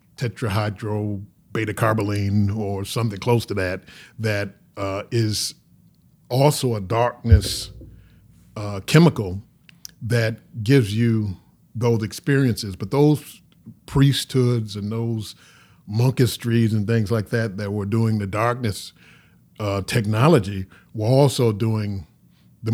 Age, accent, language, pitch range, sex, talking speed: 40-59, American, English, 95-115 Hz, male, 110 wpm